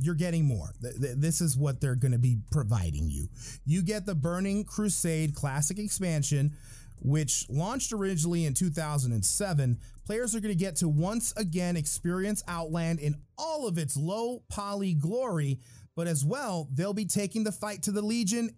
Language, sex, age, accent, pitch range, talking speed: English, male, 30-49, American, 140-195 Hz, 160 wpm